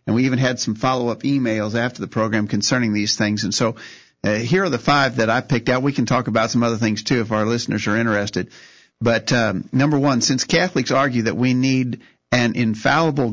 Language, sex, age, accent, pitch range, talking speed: English, male, 50-69, American, 105-130 Hz, 220 wpm